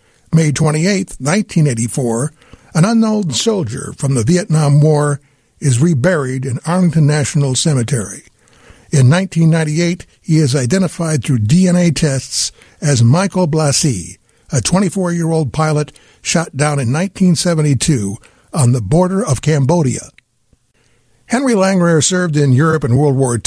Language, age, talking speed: English, 60-79, 120 wpm